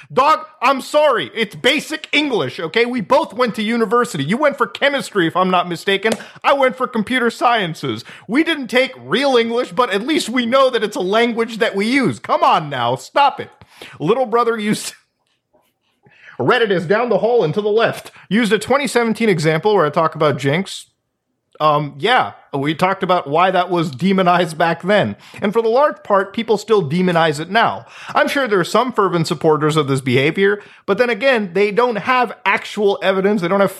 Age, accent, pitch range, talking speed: 40-59, American, 170-235 Hz, 195 wpm